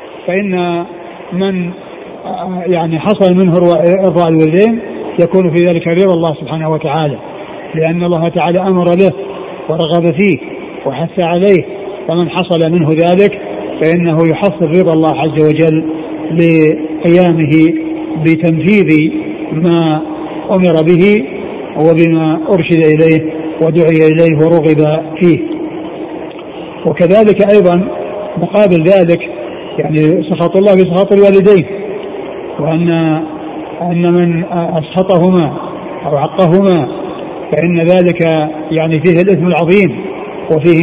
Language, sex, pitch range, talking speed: Arabic, male, 160-185 Hz, 100 wpm